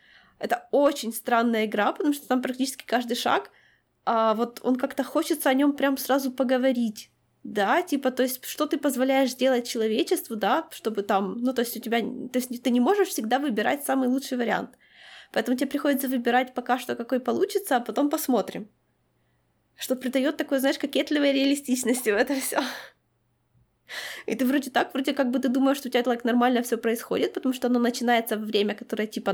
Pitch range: 225-275 Hz